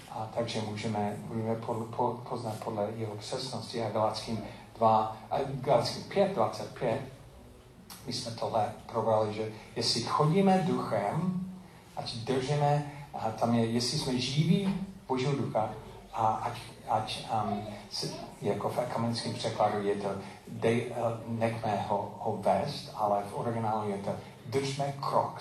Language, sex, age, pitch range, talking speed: Czech, male, 40-59, 105-135 Hz, 120 wpm